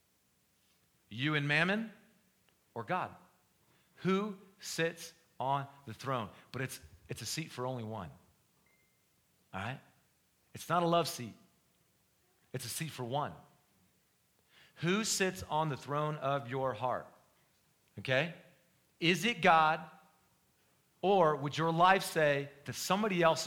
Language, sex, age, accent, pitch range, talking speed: English, male, 40-59, American, 130-180 Hz, 130 wpm